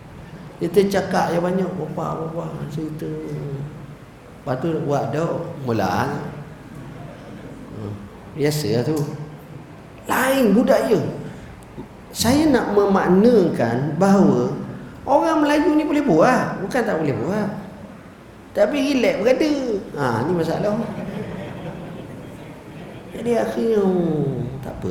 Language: Malay